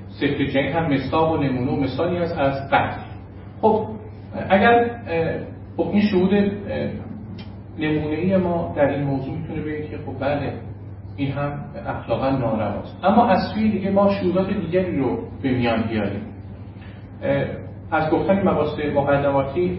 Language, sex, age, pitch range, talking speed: Persian, male, 40-59, 105-165 Hz, 125 wpm